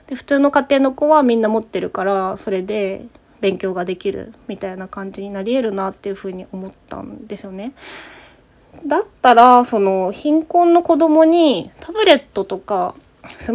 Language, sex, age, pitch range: Japanese, female, 20-39, 195-270 Hz